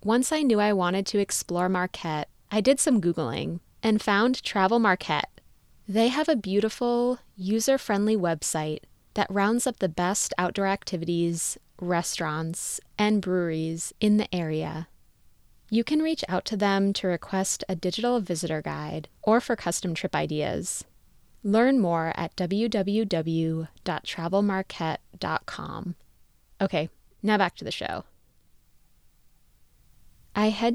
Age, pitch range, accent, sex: 20-39, 170-220 Hz, American, female